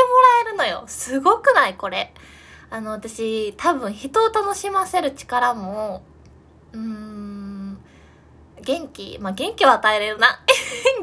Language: Japanese